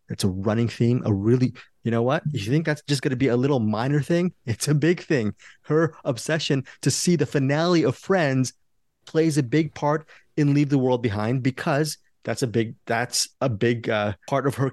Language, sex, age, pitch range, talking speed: English, male, 30-49, 115-150 Hz, 210 wpm